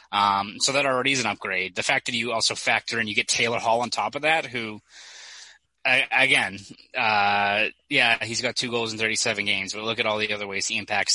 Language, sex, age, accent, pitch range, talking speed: English, male, 20-39, American, 105-125 Hz, 230 wpm